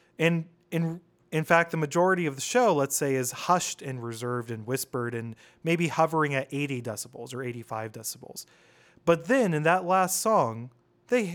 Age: 30-49